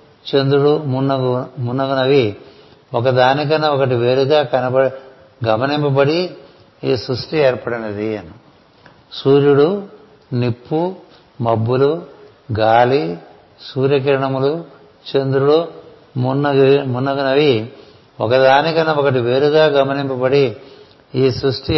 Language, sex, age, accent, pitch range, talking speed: Telugu, male, 60-79, native, 130-150 Hz, 70 wpm